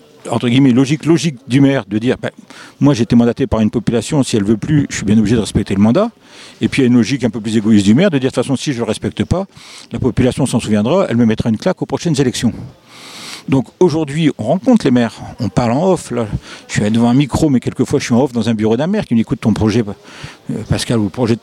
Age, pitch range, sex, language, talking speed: 60-79, 115-150 Hz, male, French, 295 wpm